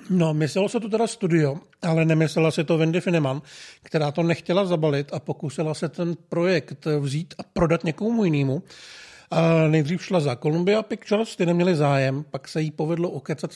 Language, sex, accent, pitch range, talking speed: Czech, male, native, 155-190 Hz, 175 wpm